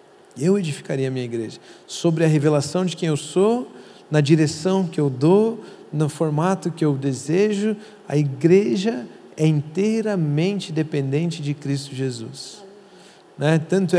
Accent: Brazilian